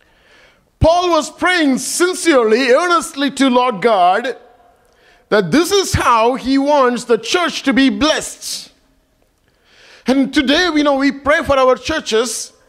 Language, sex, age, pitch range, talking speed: English, male, 50-69, 230-295 Hz, 130 wpm